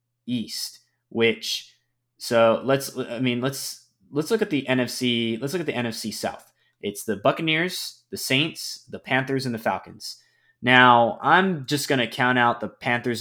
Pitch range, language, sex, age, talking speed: 110-125 Hz, English, male, 20-39, 170 wpm